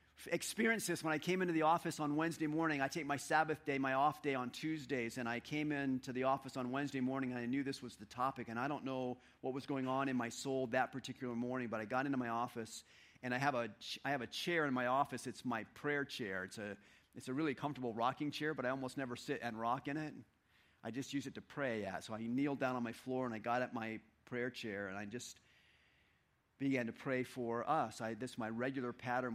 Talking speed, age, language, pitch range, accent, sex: 245 wpm, 40-59, English, 110-135 Hz, American, male